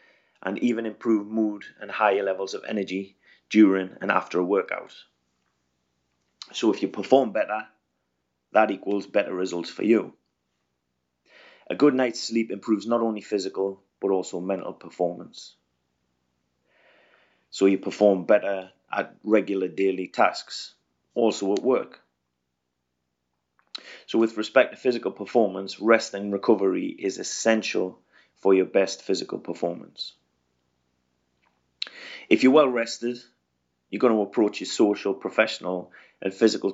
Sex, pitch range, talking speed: male, 65-105 Hz, 125 wpm